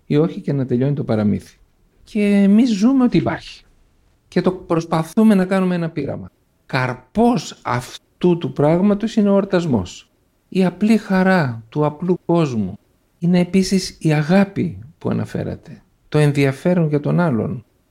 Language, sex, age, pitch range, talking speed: Greek, male, 50-69, 115-170 Hz, 145 wpm